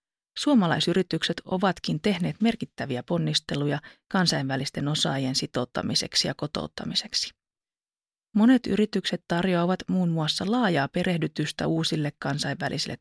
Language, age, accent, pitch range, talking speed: Finnish, 30-49, native, 165-210 Hz, 90 wpm